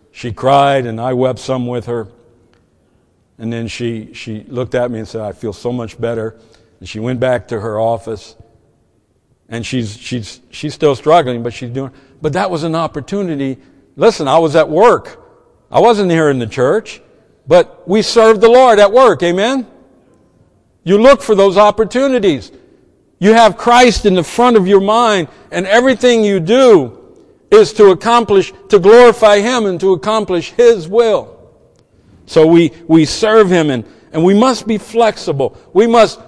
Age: 60-79